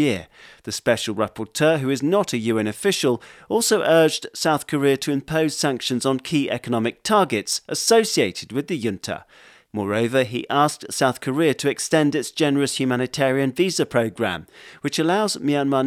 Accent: British